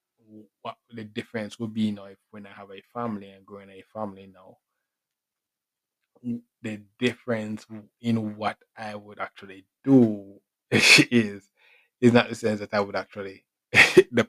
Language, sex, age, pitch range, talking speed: English, male, 20-39, 100-115 Hz, 145 wpm